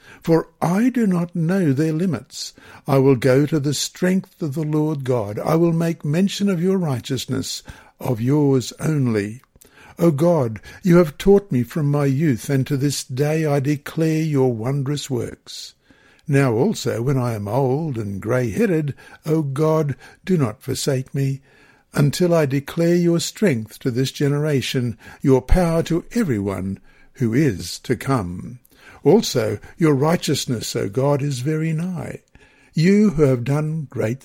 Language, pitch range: English, 130-165 Hz